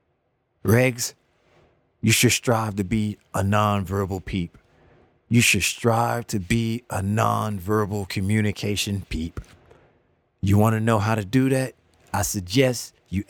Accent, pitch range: American, 100-125 Hz